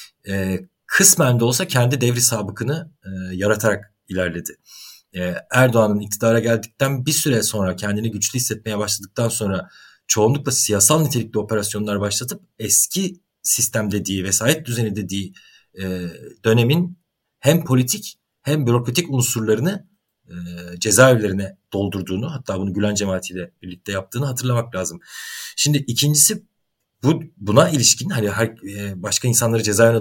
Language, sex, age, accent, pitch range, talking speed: Turkish, male, 40-59, native, 100-125 Hz, 110 wpm